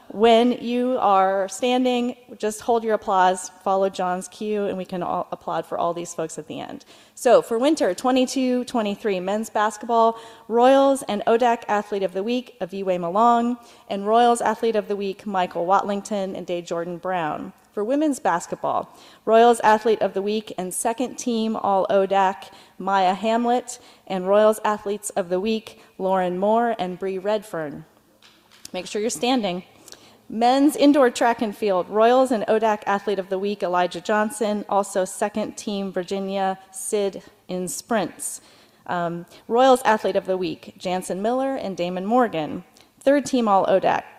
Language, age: English, 30-49